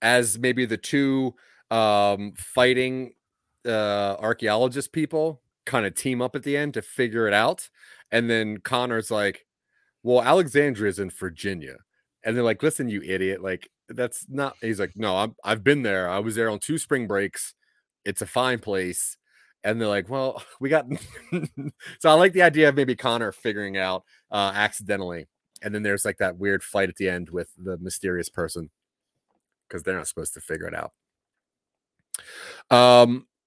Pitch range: 100-130 Hz